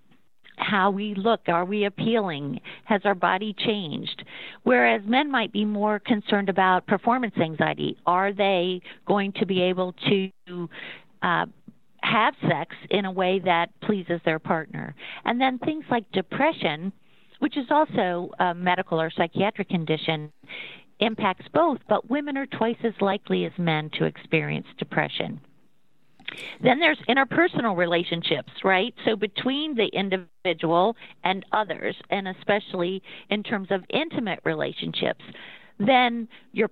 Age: 50-69